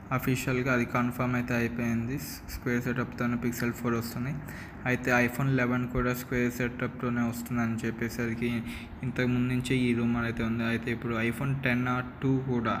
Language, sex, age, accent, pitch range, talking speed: Telugu, male, 20-39, native, 120-130 Hz, 145 wpm